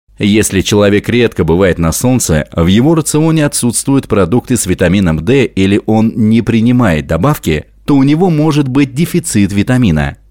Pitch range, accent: 90-140 Hz, native